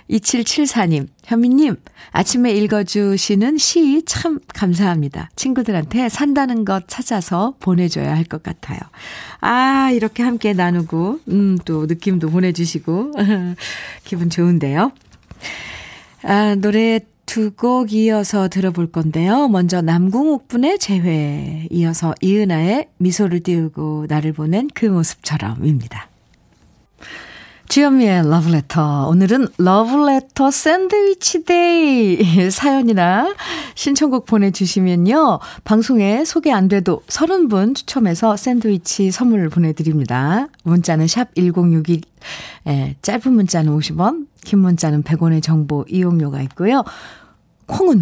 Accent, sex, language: native, female, Korean